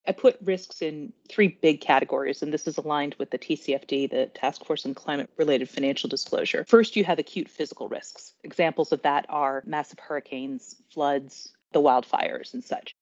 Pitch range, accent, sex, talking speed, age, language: 145-185 Hz, American, female, 175 wpm, 30-49, English